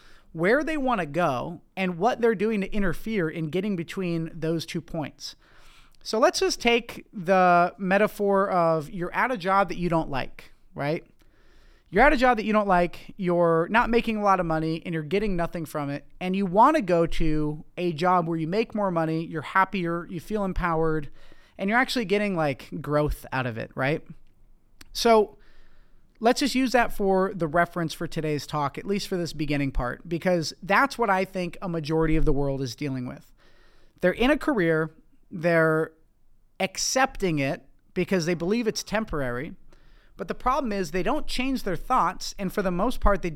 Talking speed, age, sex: 190 wpm, 30-49, male